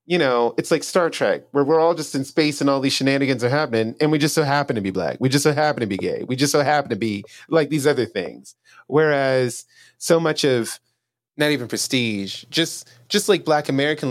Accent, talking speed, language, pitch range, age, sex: American, 235 wpm, English, 120-165 Hz, 30-49, male